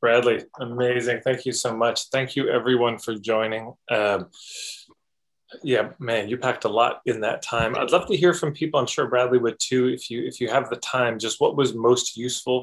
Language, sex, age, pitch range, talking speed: English, male, 20-39, 110-135 Hz, 210 wpm